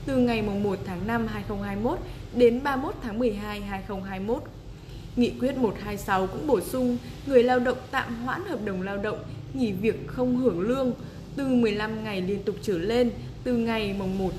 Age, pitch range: 20-39, 180-240 Hz